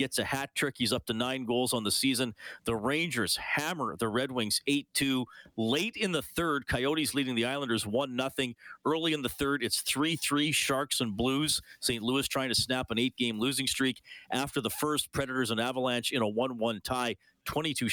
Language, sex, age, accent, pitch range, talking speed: English, male, 40-59, American, 110-140 Hz, 210 wpm